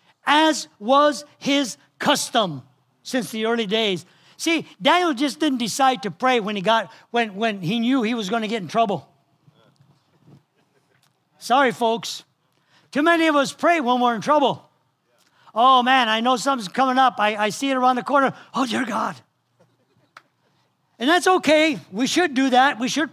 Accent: American